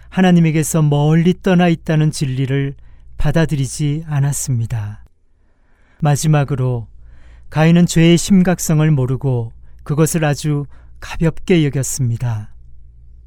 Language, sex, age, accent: Korean, male, 40-59, native